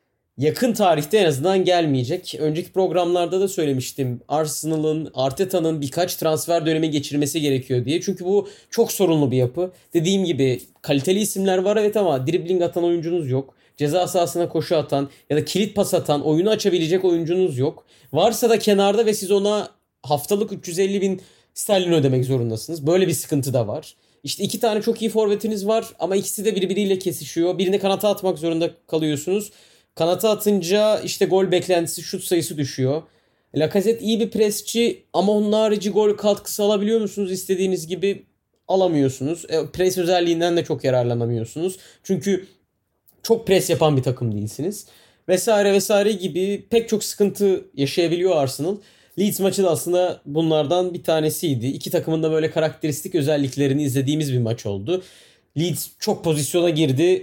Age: 30-49